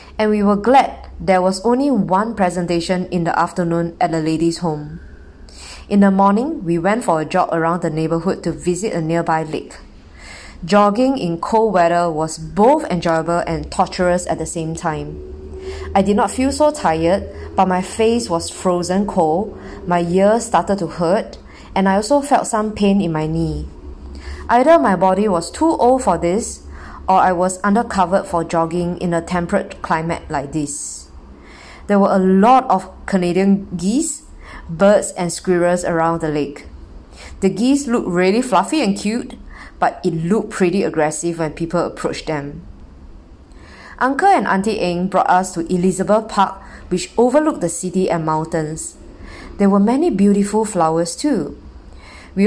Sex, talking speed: female, 160 wpm